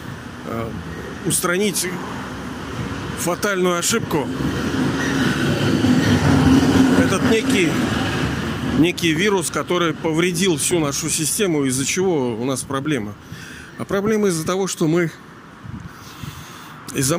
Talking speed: 85 wpm